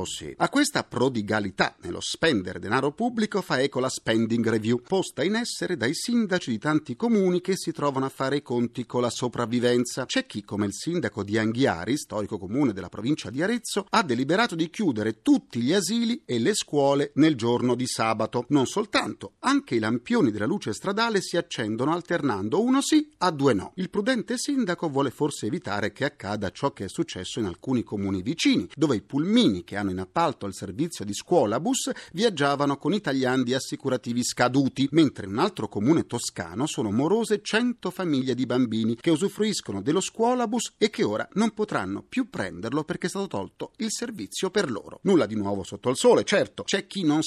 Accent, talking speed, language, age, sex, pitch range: native, 185 wpm, Italian, 40-59, male, 120-200 Hz